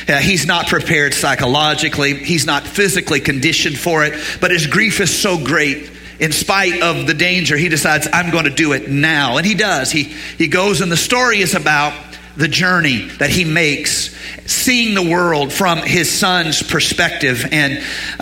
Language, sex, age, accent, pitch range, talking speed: English, male, 40-59, American, 150-185 Hz, 175 wpm